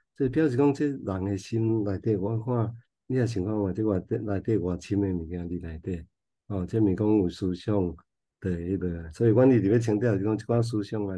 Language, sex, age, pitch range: Chinese, male, 50-69, 95-110 Hz